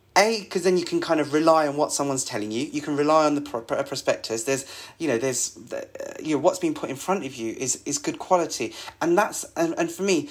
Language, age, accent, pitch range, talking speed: English, 30-49, British, 130-165 Hz, 260 wpm